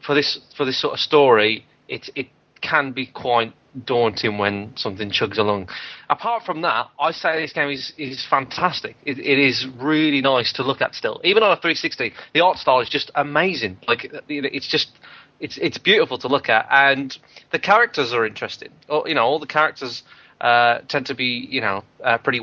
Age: 30-49